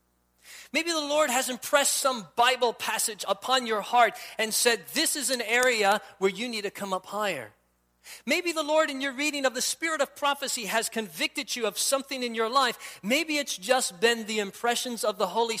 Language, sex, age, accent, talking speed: English, male, 40-59, American, 200 wpm